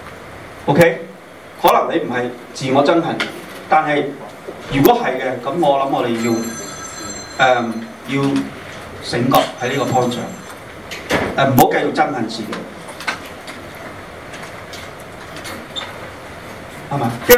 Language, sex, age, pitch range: Chinese, male, 30-49, 120-165 Hz